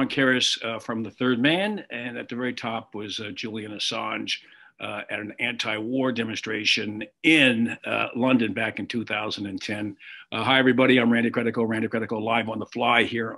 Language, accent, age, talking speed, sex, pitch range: English, American, 50-69, 170 wpm, male, 110-155 Hz